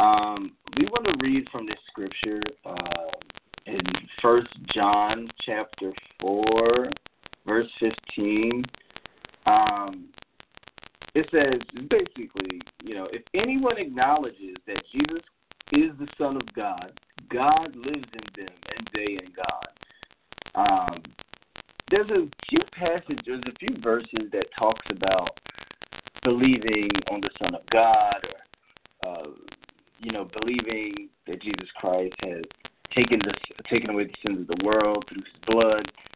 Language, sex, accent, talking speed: English, male, American, 130 wpm